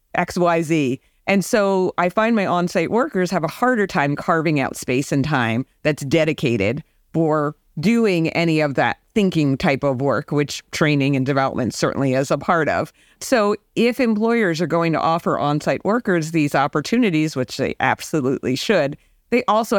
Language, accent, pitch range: English, American, 150-200 Hz